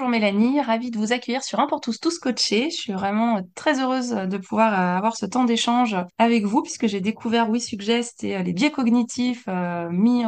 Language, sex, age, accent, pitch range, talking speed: French, female, 20-39, French, 190-230 Hz, 200 wpm